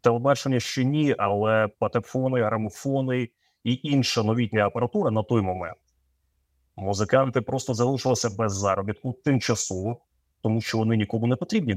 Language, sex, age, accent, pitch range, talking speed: Ukrainian, male, 30-49, native, 110-145 Hz, 125 wpm